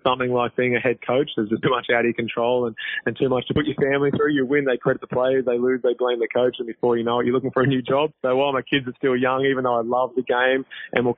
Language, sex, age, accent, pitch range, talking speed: English, male, 20-39, Australian, 125-140 Hz, 325 wpm